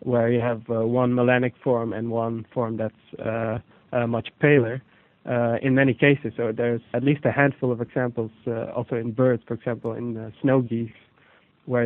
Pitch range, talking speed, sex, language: 115-130 Hz, 190 wpm, male, English